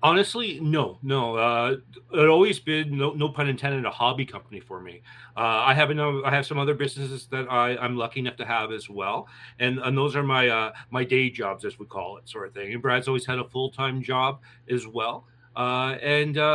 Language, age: English, 40-59